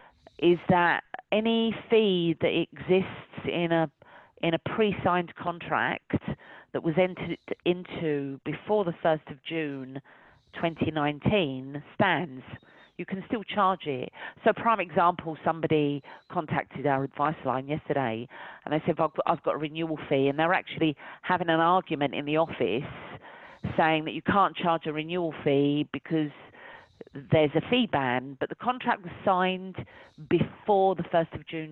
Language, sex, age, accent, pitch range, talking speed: English, female, 40-59, British, 150-195 Hz, 150 wpm